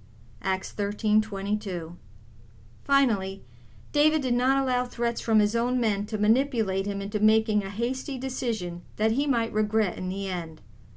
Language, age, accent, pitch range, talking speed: English, 50-69, American, 160-235 Hz, 150 wpm